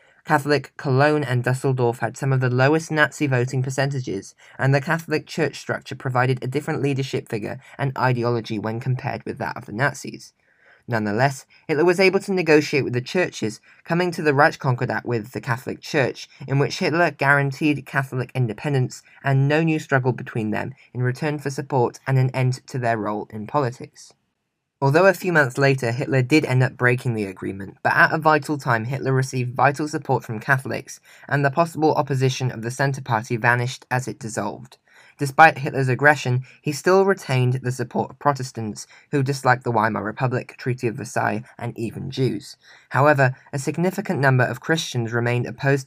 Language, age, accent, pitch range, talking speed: English, 10-29, British, 120-145 Hz, 180 wpm